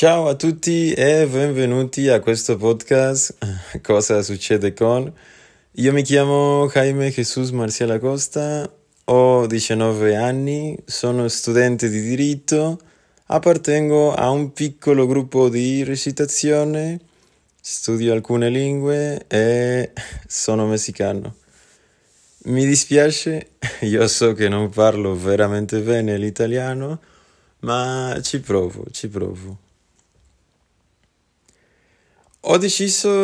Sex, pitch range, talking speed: male, 100-140 Hz, 100 wpm